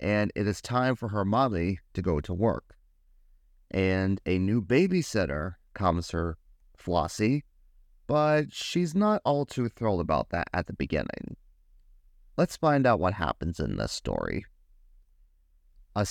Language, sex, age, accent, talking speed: English, male, 30-49, American, 140 wpm